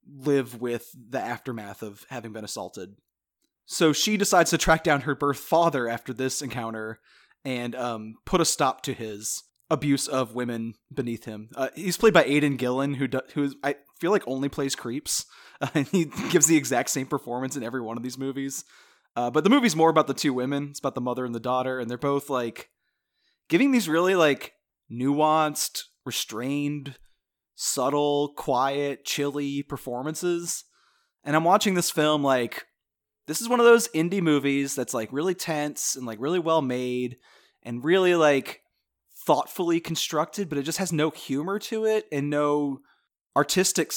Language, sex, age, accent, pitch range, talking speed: English, male, 20-39, American, 130-165 Hz, 175 wpm